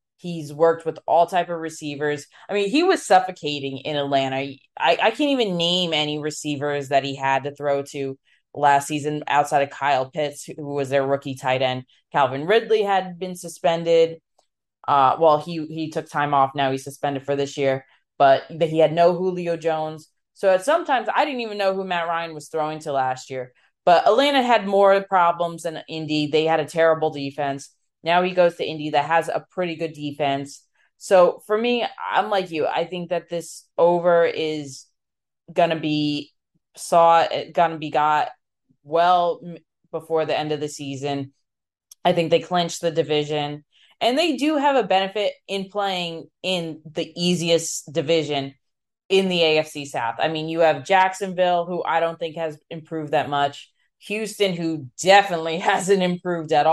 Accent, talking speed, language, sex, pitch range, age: American, 180 wpm, English, female, 145-175 Hz, 20-39